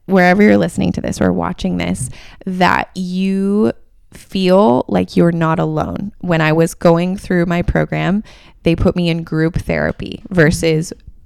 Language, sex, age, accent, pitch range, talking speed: English, female, 20-39, American, 155-185 Hz, 155 wpm